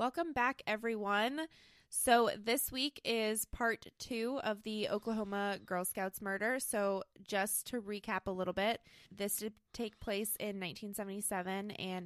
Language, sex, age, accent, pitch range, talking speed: English, female, 20-39, American, 180-215 Hz, 145 wpm